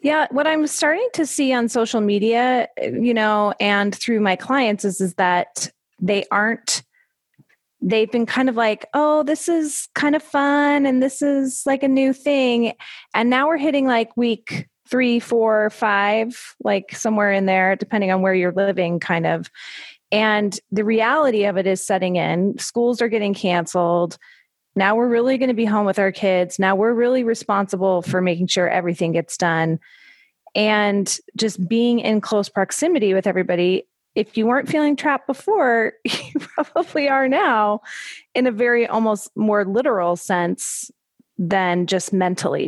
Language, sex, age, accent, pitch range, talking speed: English, female, 30-49, American, 195-260 Hz, 165 wpm